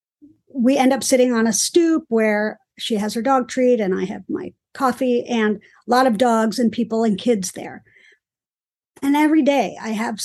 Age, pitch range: 50-69, 220-260 Hz